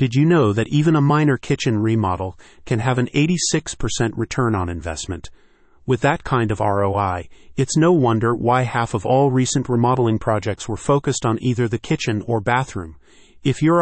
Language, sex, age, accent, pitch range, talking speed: English, male, 40-59, American, 110-140 Hz, 180 wpm